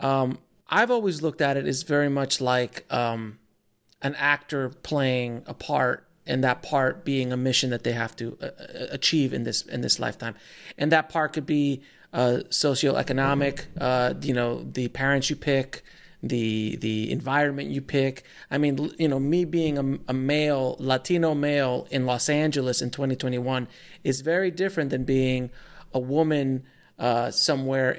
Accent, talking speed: American, 165 wpm